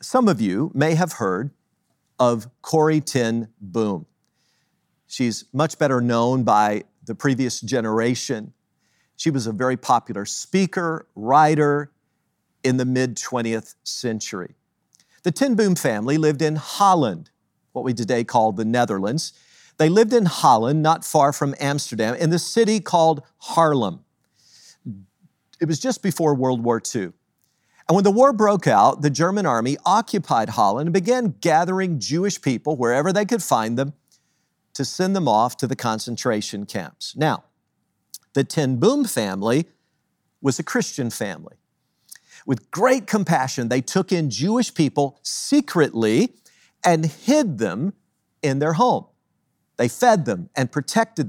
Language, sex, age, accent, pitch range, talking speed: English, male, 50-69, American, 125-185 Hz, 140 wpm